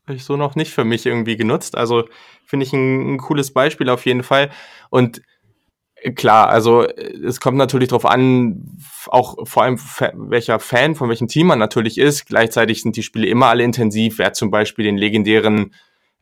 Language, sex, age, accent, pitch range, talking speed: German, male, 20-39, German, 110-125 Hz, 185 wpm